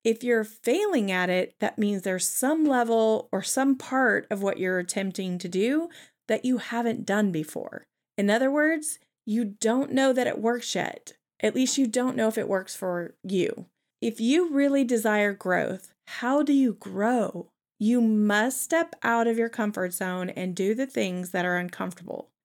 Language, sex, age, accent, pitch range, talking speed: English, female, 30-49, American, 200-255 Hz, 180 wpm